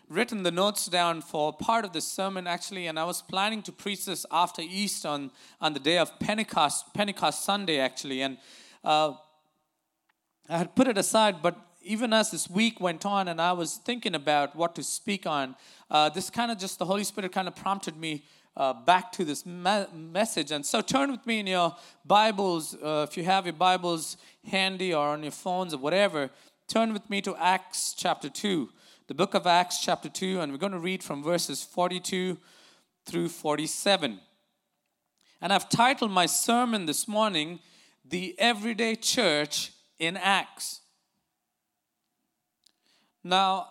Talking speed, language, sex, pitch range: 170 wpm, English, male, 160-205 Hz